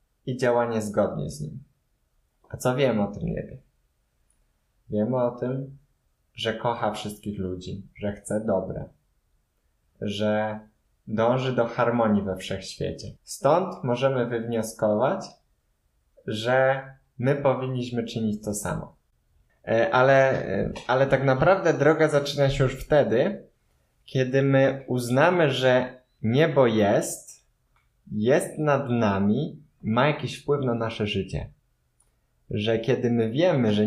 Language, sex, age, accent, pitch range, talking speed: Polish, male, 20-39, native, 105-135 Hz, 115 wpm